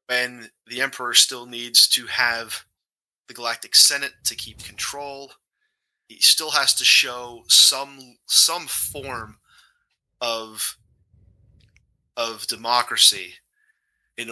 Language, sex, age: English, male, 30-49